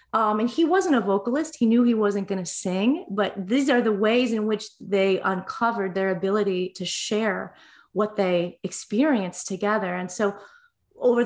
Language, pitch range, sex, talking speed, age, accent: English, 195-235 Hz, female, 175 wpm, 30-49, American